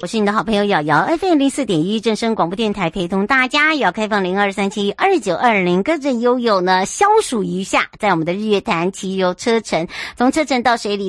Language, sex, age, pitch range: Chinese, male, 50-69, 170-225 Hz